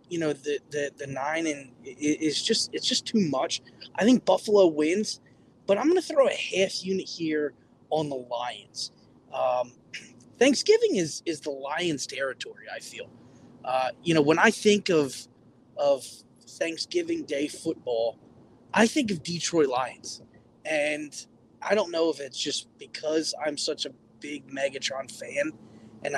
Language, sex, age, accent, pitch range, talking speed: English, male, 20-39, American, 140-175 Hz, 160 wpm